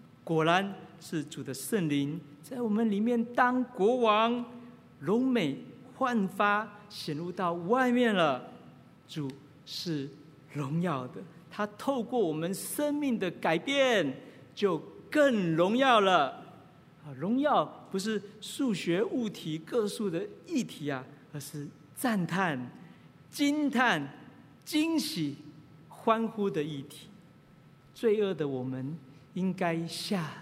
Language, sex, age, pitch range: Chinese, male, 50-69, 150-235 Hz